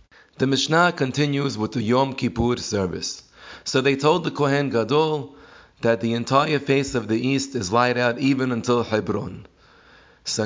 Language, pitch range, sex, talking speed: English, 110-135 Hz, male, 160 wpm